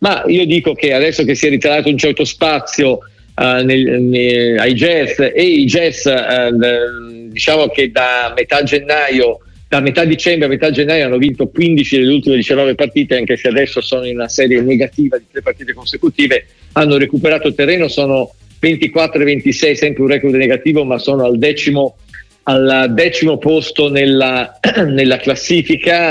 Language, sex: Italian, male